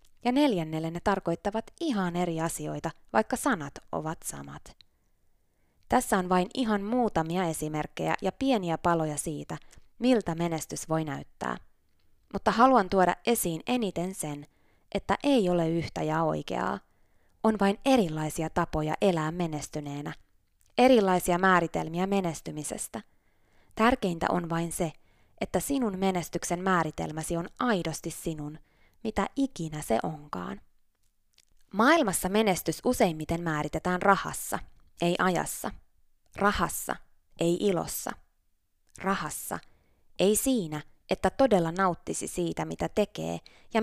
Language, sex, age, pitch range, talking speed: Finnish, female, 20-39, 150-200 Hz, 110 wpm